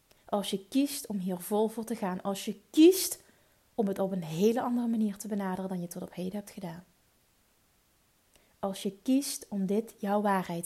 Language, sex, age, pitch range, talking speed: Dutch, female, 30-49, 195-230 Hz, 195 wpm